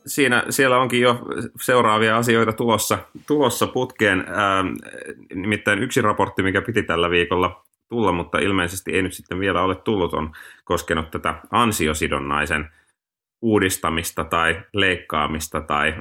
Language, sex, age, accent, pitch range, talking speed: Finnish, male, 30-49, native, 80-110 Hz, 125 wpm